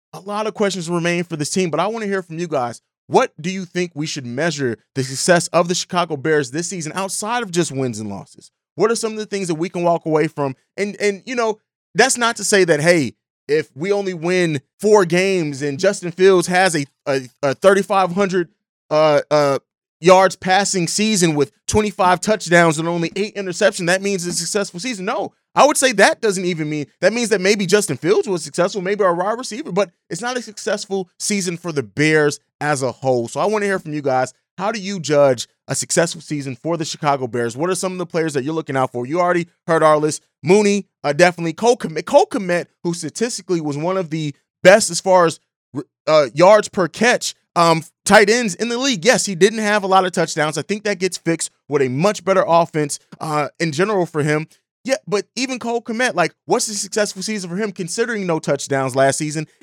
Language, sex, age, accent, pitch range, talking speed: English, male, 30-49, American, 150-200 Hz, 225 wpm